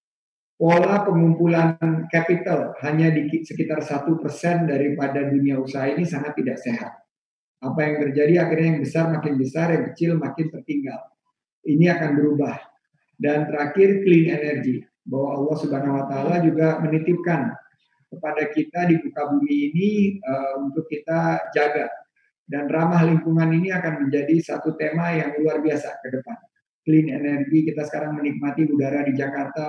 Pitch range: 145-165 Hz